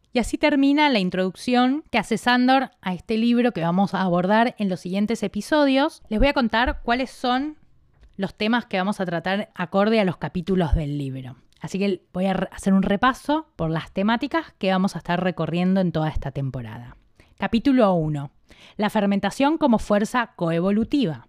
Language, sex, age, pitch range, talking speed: Spanish, female, 20-39, 185-255 Hz, 180 wpm